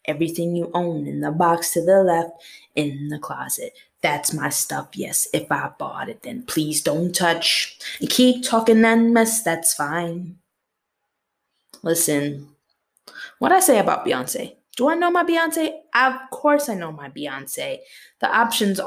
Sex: female